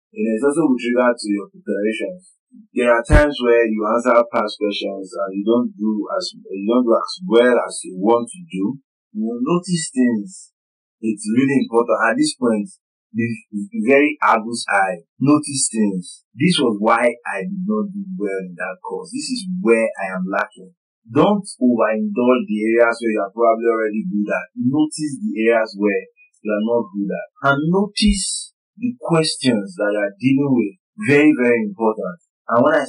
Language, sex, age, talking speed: English, male, 30-49, 180 wpm